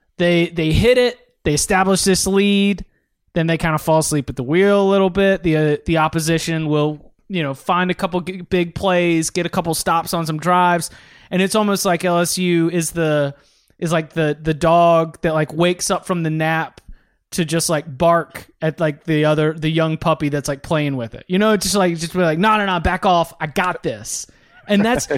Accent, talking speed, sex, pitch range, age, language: American, 215 wpm, male, 160-185 Hz, 20-39, English